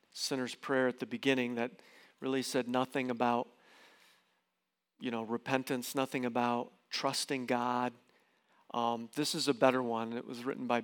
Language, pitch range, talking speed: English, 130-165 Hz, 150 wpm